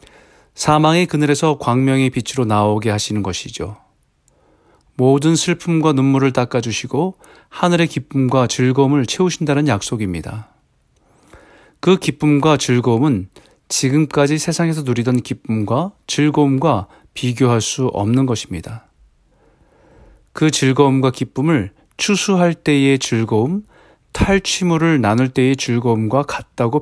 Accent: native